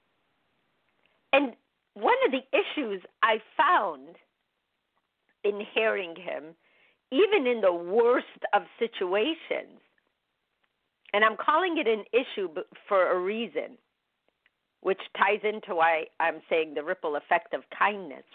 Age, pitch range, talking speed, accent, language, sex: 50-69, 180-300 Hz, 120 wpm, American, English, female